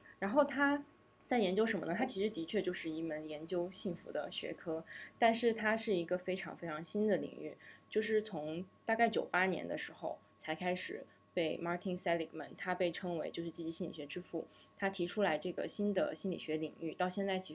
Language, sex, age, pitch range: Chinese, female, 20-39, 160-195 Hz